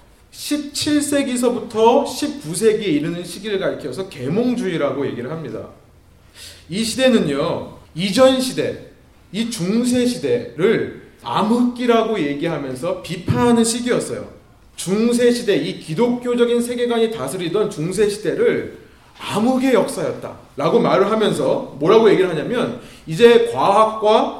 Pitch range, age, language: 170-245 Hz, 30-49, Korean